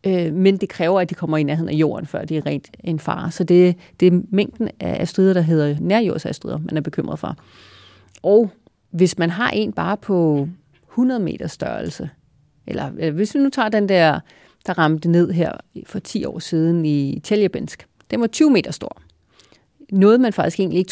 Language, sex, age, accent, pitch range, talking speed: Danish, female, 30-49, native, 165-215 Hz, 185 wpm